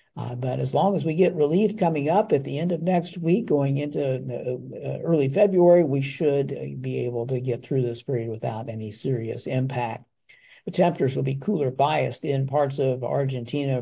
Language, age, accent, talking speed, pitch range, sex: English, 60-79, American, 190 wpm, 125-150 Hz, male